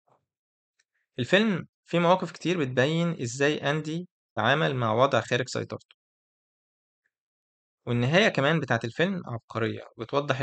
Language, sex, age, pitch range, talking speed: Arabic, male, 20-39, 115-150 Hz, 105 wpm